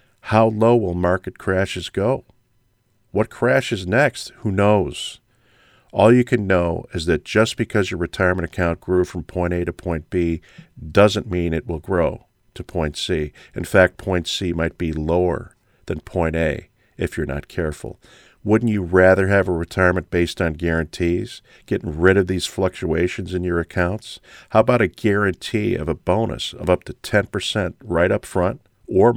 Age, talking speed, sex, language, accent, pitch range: 50-69, 170 wpm, male, English, American, 85-110 Hz